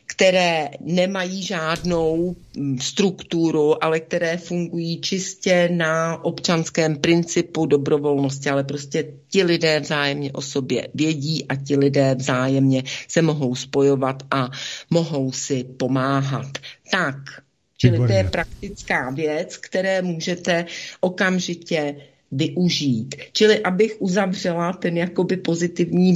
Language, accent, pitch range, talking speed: Czech, native, 145-175 Hz, 110 wpm